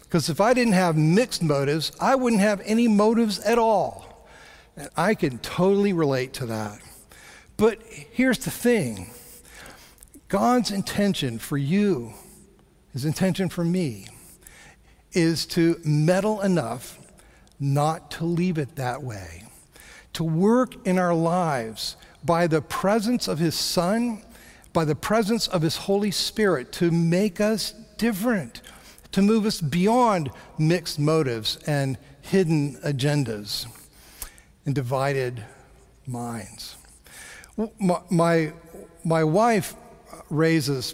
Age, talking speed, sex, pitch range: 50-69, 120 wpm, male, 135-195 Hz